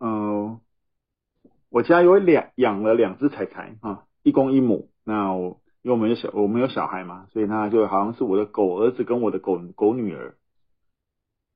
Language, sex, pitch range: Chinese, male, 100-130 Hz